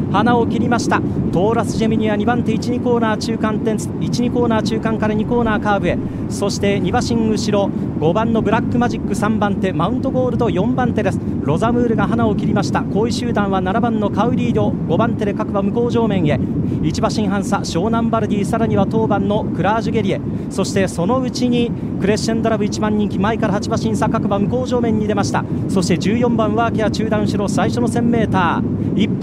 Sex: male